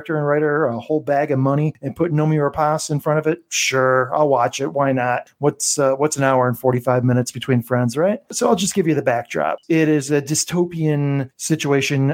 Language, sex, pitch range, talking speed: English, male, 125-150 Hz, 215 wpm